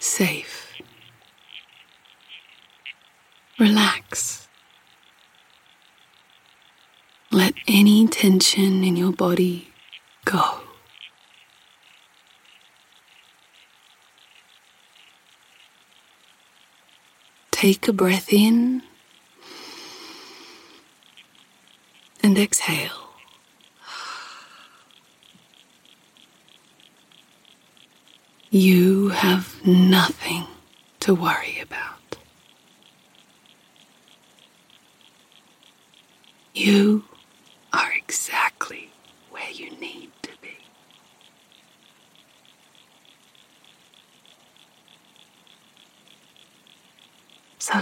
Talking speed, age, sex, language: 40 wpm, 30-49, female, English